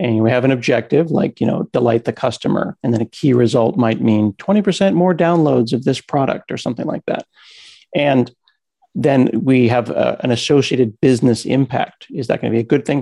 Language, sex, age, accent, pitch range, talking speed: English, male, 50-69, American, 120-145 Hz, 205 wpm